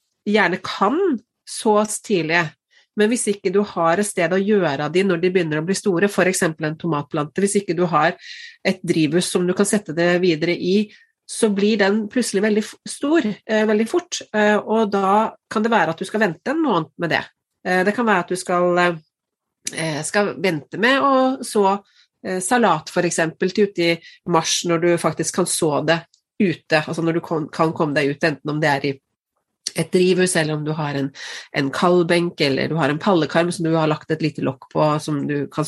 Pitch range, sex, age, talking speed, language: 165-210 Hz, female, 30-49, 195 wpm, English